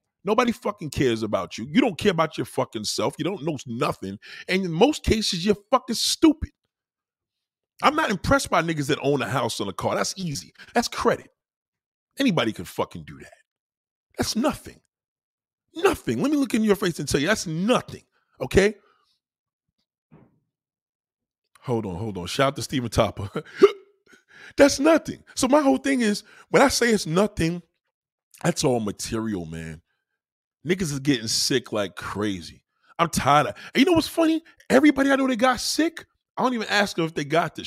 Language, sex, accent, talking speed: English, male, American, 180 wpm